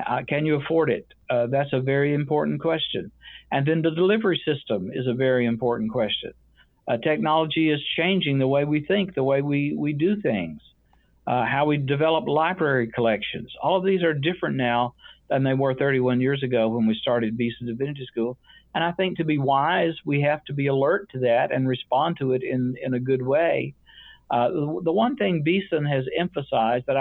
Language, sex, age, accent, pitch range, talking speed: English, male, 60-79, American, 125-165 Hz, 200 wpm